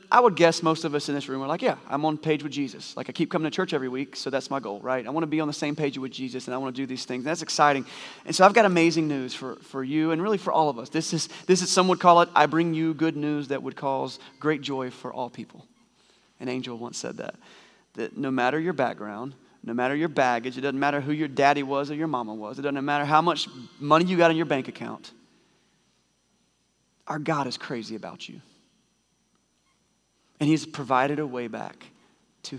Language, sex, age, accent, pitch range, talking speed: English, male, 30-49, American, 125-160 Hz, 245 wpm